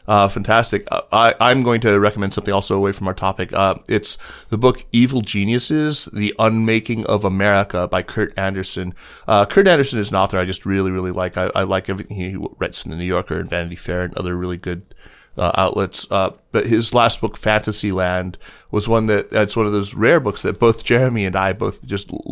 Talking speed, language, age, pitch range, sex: 205 wpm, English, 30-49, 95-105 Hz, male